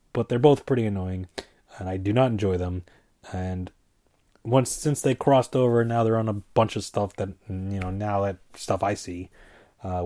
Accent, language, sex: American, English, male